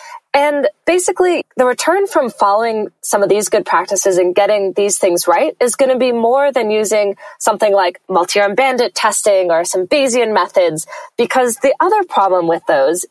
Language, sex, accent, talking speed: English, female, American, 175 wpm